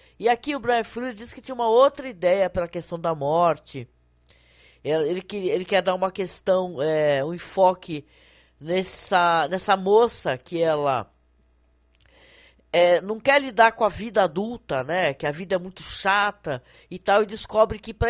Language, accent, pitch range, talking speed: Portuguese, Brazilian, 155-215 Hz, 170 wpm